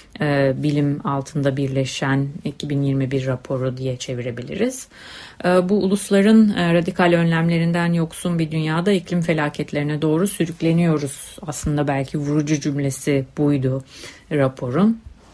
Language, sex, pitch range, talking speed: Turkish, female, 140-170 Hz, 95 wpm